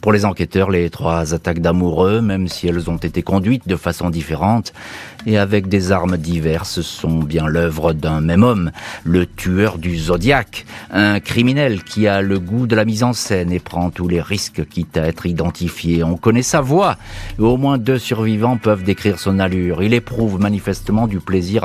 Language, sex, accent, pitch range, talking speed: French, male, French, 90-115 Hz, 190 wpm